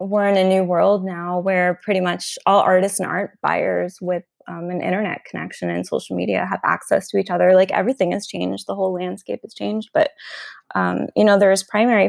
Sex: female